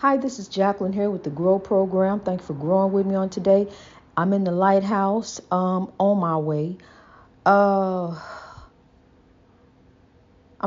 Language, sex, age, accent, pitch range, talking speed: English, female, 50-69, American, 190-280 Hz, 145 wpm